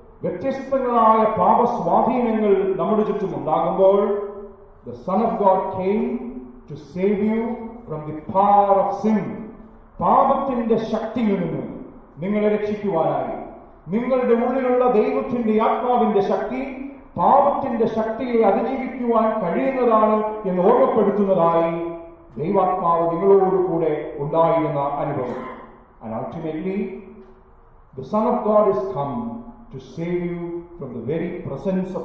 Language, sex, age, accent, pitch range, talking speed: English, male, 40-59, Indian, 160-220 Hz, 40 wpm